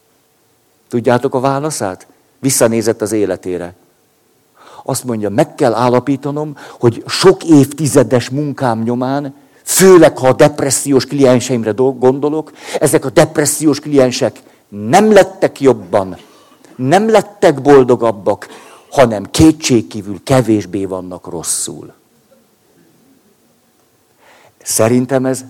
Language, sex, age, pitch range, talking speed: Hungarian, male, 50-69, 105-135 Hz, 90 wpm